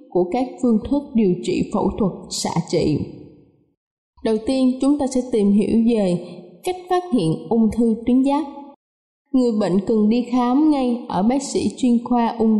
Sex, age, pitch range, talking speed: female, 10-29, 220-275 Hz, 175 wpm